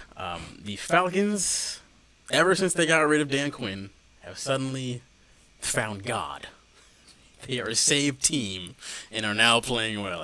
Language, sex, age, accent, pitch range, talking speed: English, male, 30-49, American, 95-125 Hz, 145 wpm